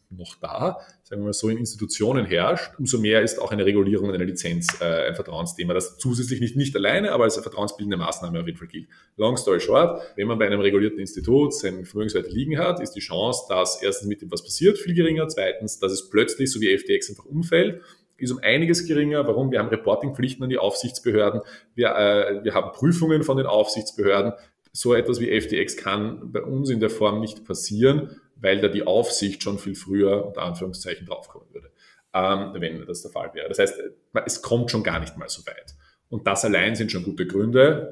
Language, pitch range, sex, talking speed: German, 100-135 Hz, male, 210 wpm